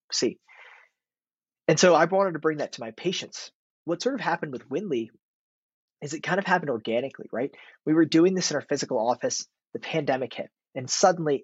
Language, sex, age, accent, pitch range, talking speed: English, male, 20-39, American, 125-160 Hz, 195 wpm